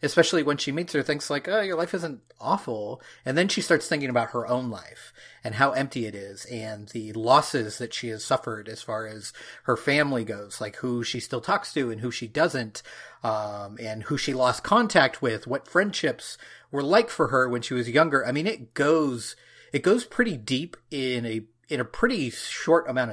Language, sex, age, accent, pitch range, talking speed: English, male, 30-49, American, 115-145 Hz, 210 wpm